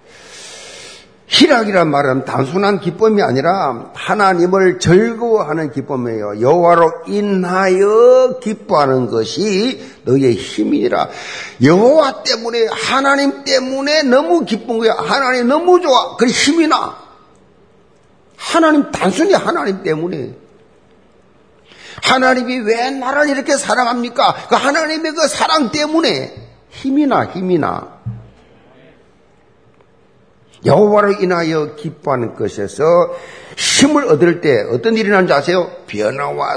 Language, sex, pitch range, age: Korean, male, 170-260 Hz, 50-69